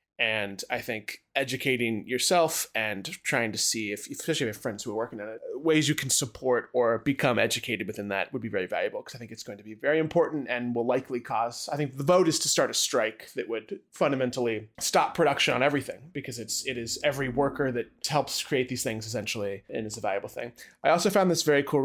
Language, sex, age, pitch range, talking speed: English, male, 20-39, 110-145 Hz, 235 wpm